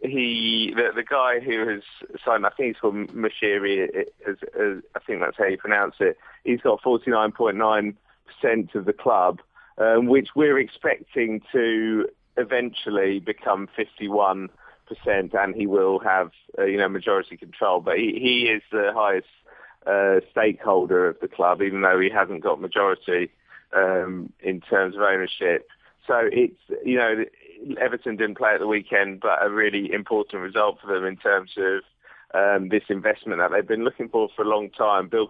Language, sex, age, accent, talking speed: English, male, 30-49, British, 165 wpm